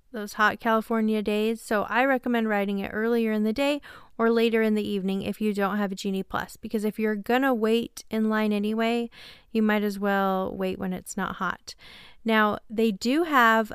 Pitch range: 205-230 Hz